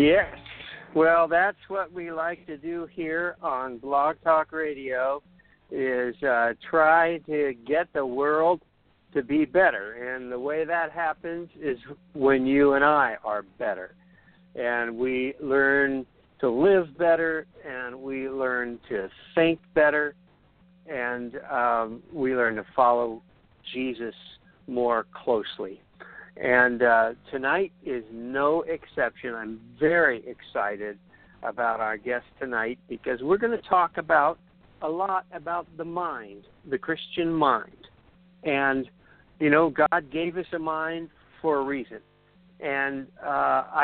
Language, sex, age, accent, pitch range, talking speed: English, male, 60-79, American, 125-165 Hz, 130 wpm